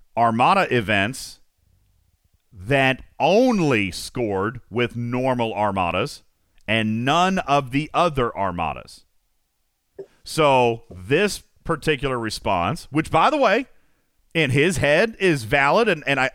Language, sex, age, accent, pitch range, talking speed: English, male, 40-59, American, 105-155 Hz, 105 wpm